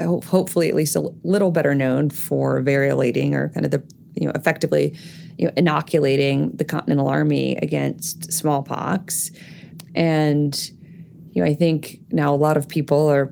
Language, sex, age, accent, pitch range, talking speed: English, female, 30-49, American, 140-170 Hz, 160 wpm